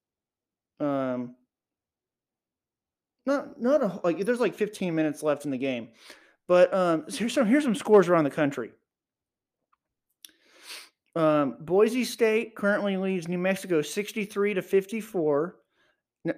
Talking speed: 115 wpm